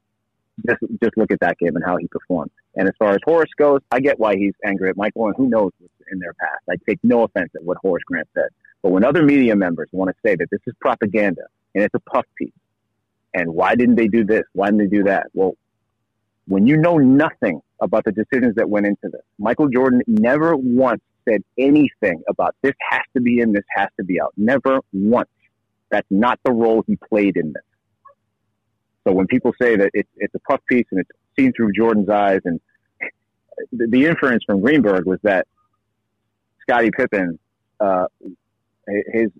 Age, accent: 30-49, American